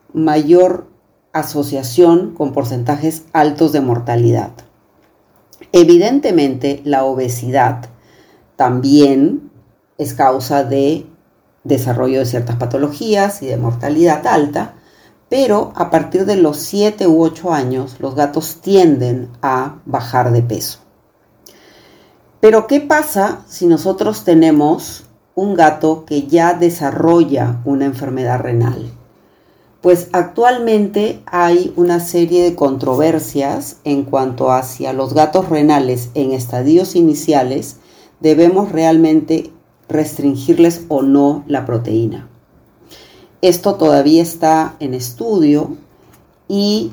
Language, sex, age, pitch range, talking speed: Spanish, female, 50-69, 135-170 Hz, 105 wpm